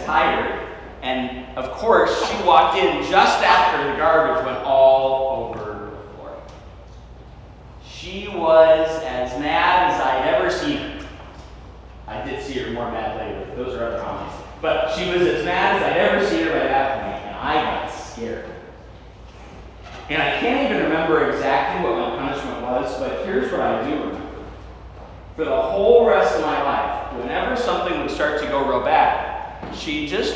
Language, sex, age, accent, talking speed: English, male, 30-49, American, 170 wpm